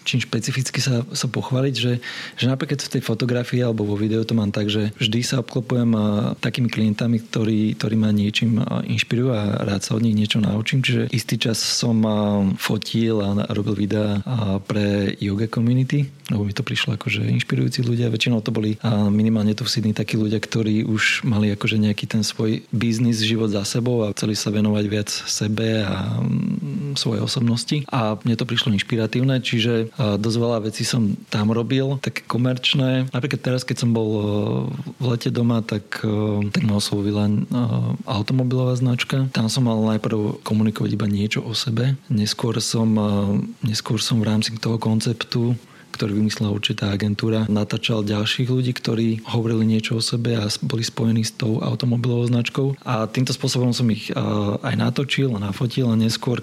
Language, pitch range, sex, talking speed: Slovak, 105-125 Hz, male, 175 wpm